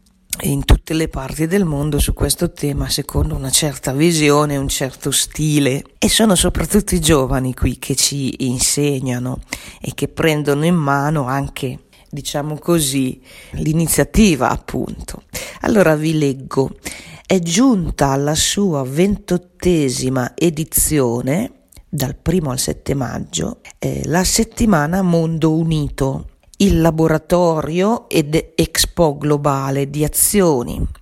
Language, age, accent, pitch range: Italian, 40-59, native, 135-175 Hz